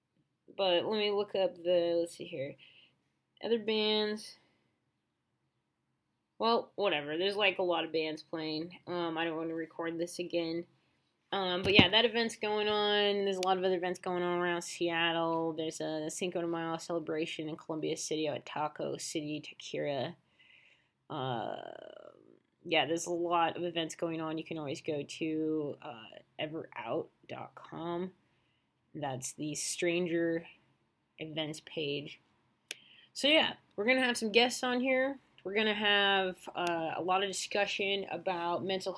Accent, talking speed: American, 155 wpm